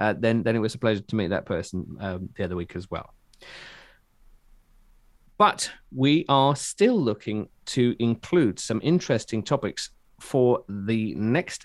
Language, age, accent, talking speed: English, 40-59, British, 155 wpm